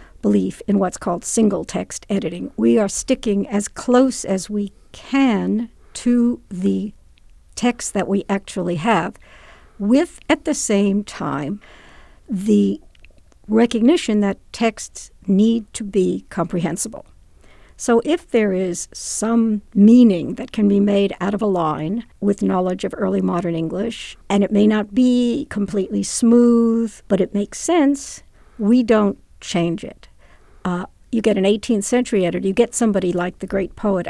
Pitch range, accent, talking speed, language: 195-235 Hz, American, 150 wpm, English